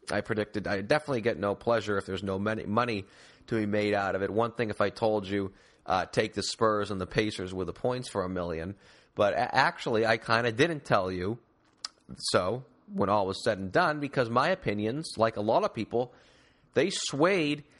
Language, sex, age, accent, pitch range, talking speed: English, male, 30-49, American, 105-135 Hz, 205 wpm